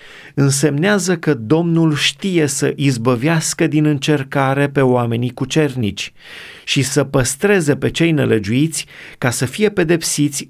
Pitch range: 125-155 Hz